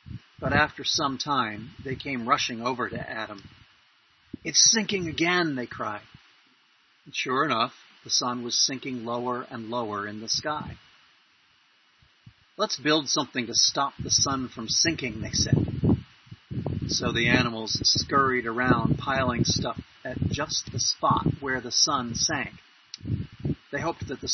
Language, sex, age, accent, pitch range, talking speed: English, male, 40-59, American, 115-140 Hz, 145 wpm